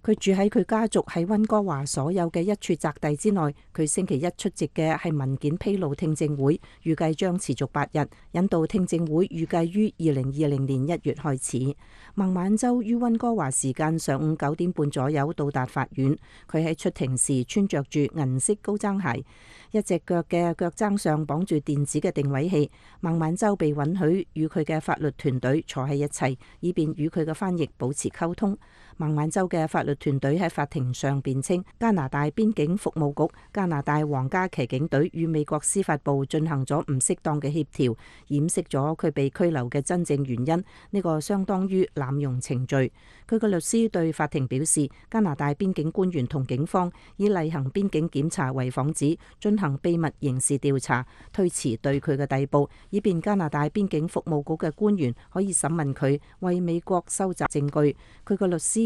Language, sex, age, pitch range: English, female, 40-59, 140-180 Hz